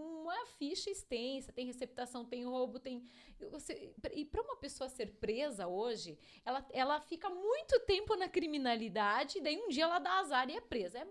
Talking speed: 180 wpm